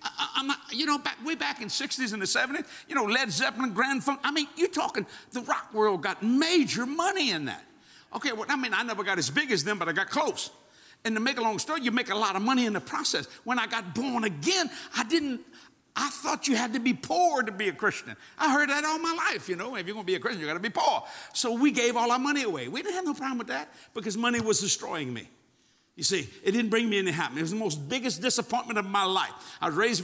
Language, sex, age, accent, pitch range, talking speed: English, male, 60-79, American, 210-270 Hz, 280 wpm